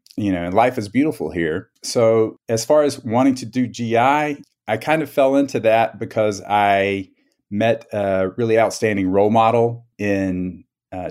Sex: male